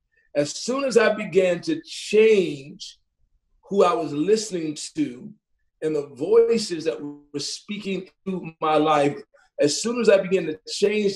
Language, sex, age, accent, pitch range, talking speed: English, male, 40-59, American, 155-210 Hz, 150 wpm